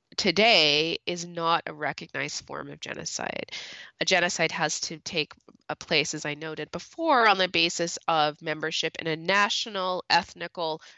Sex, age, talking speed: female, 20-39, 155 wpm